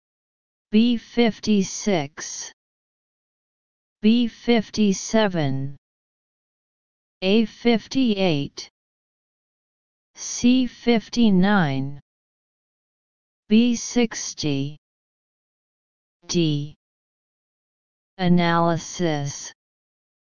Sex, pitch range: female, 155-205 Hz